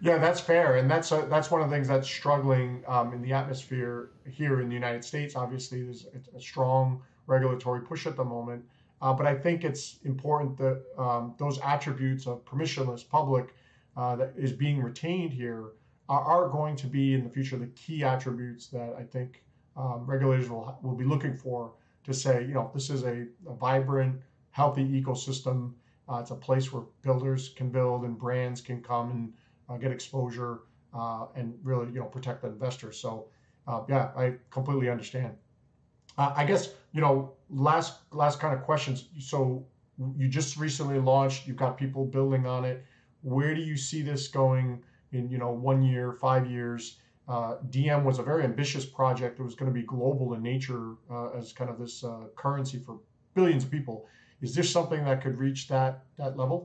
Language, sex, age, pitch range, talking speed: English, male, 40-59, 125-135 Hz, 195 wpm